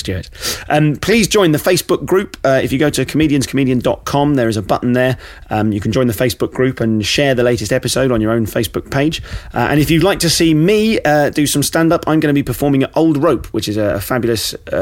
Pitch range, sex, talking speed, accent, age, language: 110-145 Hz, male, 240 wpm, British, 30-49, English